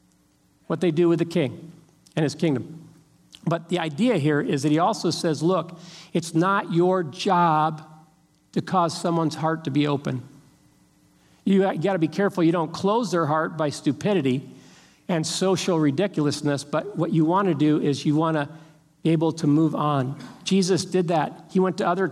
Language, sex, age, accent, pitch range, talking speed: English, male, 50-69, American, 155-185 Hz, 180 wpm